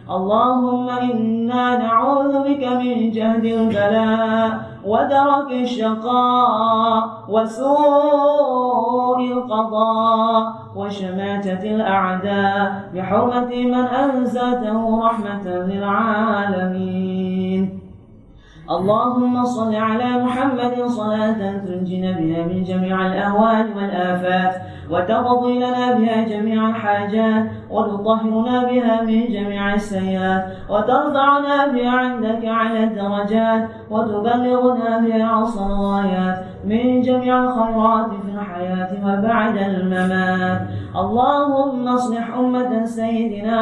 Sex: female